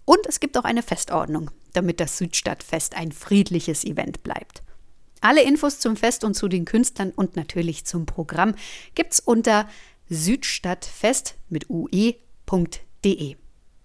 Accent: German